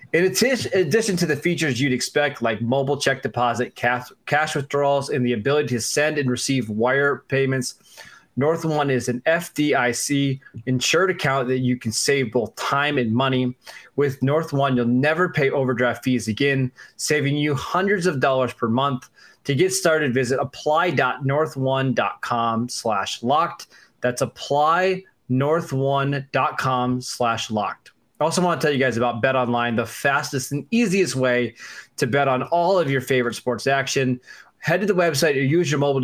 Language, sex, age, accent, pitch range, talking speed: English, male, 20-39, American, 125-155 Hz, 150 wpm